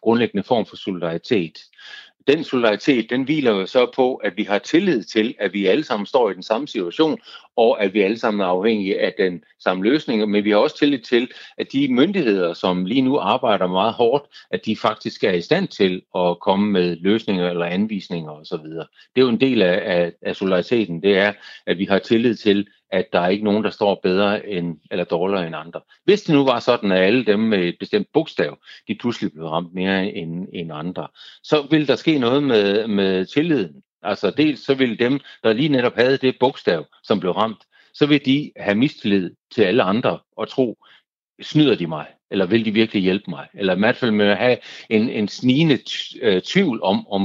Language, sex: Danish, male